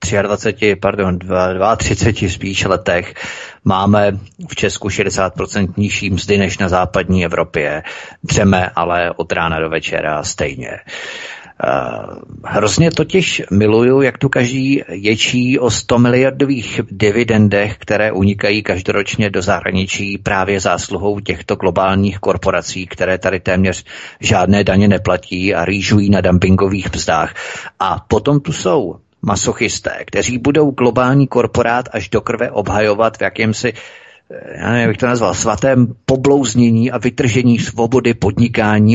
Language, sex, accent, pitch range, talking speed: Czech, male, native, 95-120 Hz, 120 wpm